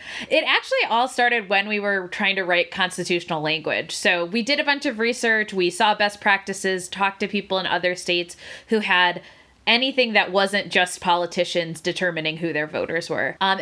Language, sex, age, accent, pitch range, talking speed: English, female, 20-39, American, 175-225 Hz, 185 wpm